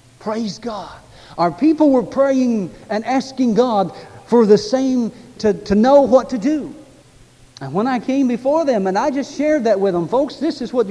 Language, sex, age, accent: English, male, 60-79, American